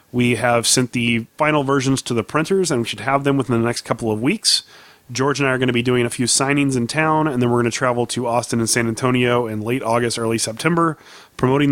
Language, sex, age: English, male, 30-49